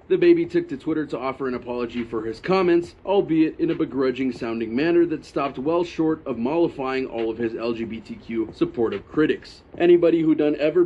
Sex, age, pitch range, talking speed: male, 30-49, 120-160 Hz, 180 wpm